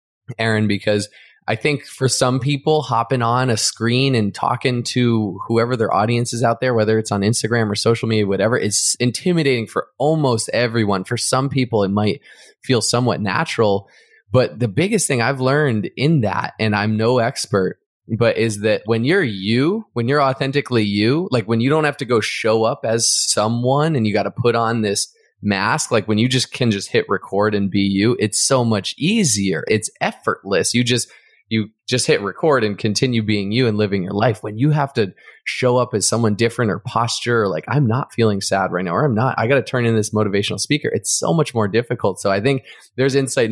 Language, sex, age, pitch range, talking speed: English, male, 20-39, 105-130 Hz, 210 wpm